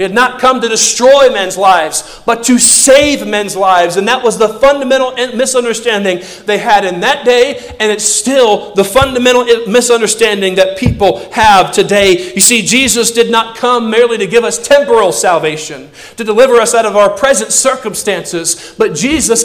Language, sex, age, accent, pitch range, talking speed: English, male, 40-59, American, 190-260 Hz, 175 wpm